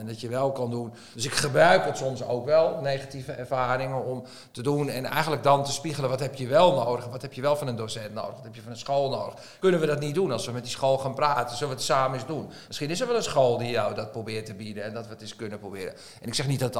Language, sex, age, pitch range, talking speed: Dutch, male, 50-69, 120-150 Hz, 305 wpm